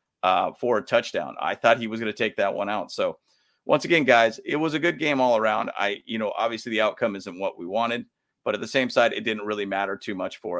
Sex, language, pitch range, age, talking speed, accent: male, English, 100-125 Hz, 30-49, 265 wpm, American